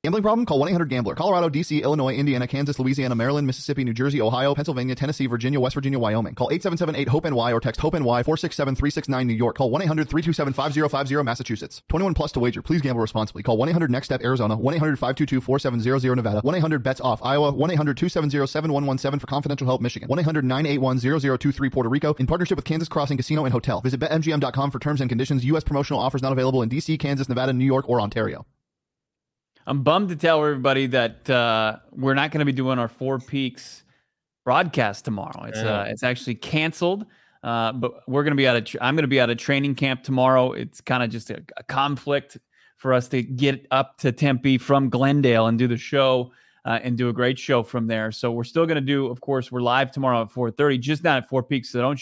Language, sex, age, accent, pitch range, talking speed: English, male, 30-49, American, 125-145 Hz, 250 wpm